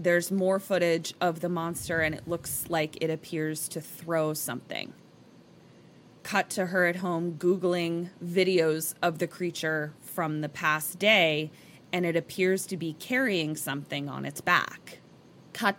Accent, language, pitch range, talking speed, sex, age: American, English, 165-200 Hz, 150 wpm, female, 20-39